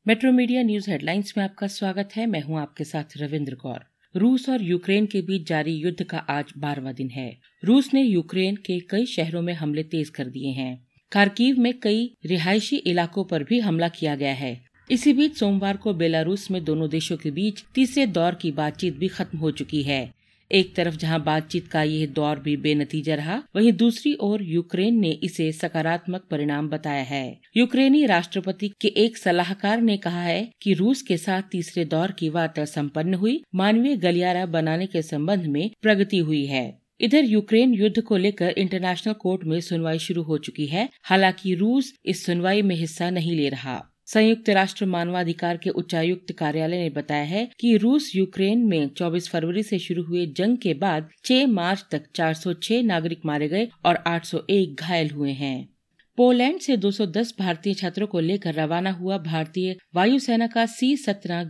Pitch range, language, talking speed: 160-210 Hz, Hindi, 180 wpm